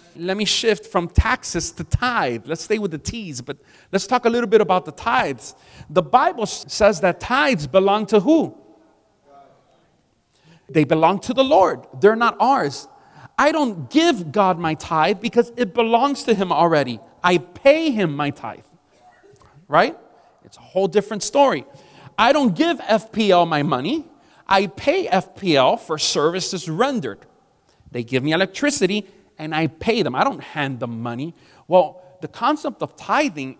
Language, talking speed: English, 160 wpm